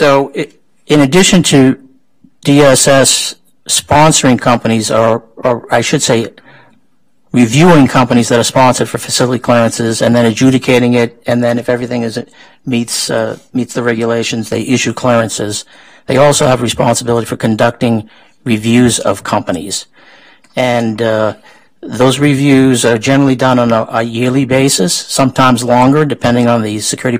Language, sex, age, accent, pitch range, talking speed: English, male, 50-69, American, 115-135 Hz, 140 wpm